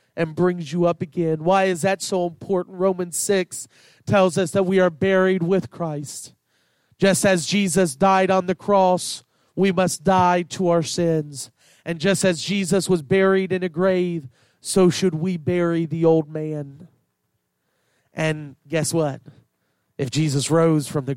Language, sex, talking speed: English, male, 160 wpm